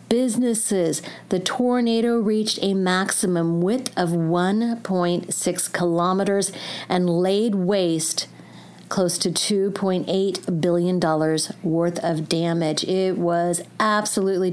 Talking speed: 95 wpm